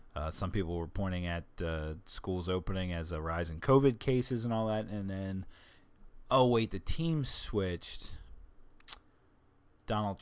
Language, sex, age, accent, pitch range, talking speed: English, male, 30-49, American, 85-105 Hz, 155 wpm